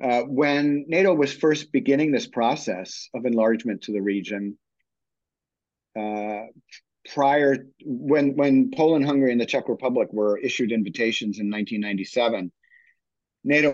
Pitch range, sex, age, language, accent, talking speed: 110-140 Hz, male, 50-69, English, American, 120 wpm